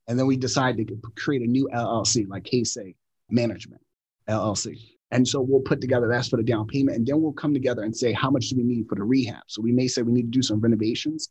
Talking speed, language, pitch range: 255 wpm, English, 110-130 Hz